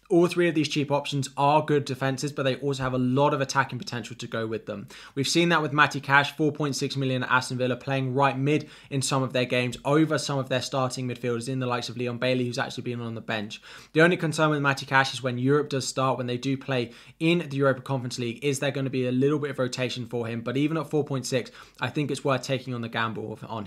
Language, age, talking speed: English, 20-39, 265 wpm